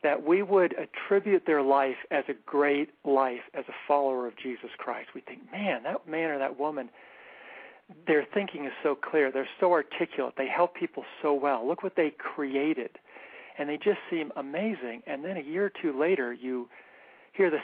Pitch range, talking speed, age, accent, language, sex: 130-160 Hz, 190 wpm, 50-69, American, English, male